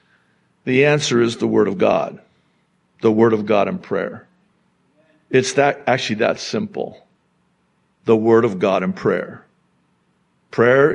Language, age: English, 50-69